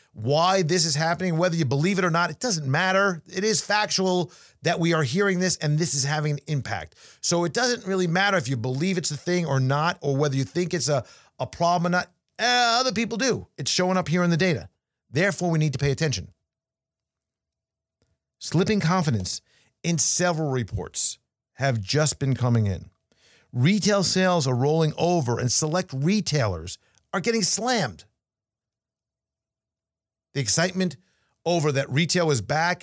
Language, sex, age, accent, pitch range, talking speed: English, male, 50-69, American, 130-180 Hz, 175 wpm